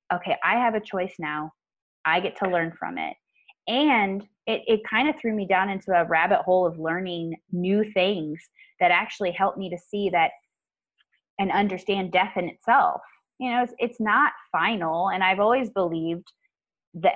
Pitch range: 175-230 Hz